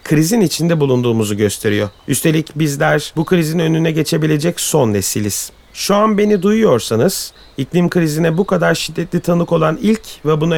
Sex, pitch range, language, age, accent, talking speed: male, 140-185 Hz, Turkish, 40-59, native, 150 wpm